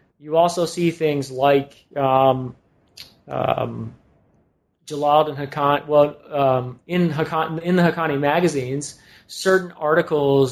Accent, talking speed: American, 115 wpm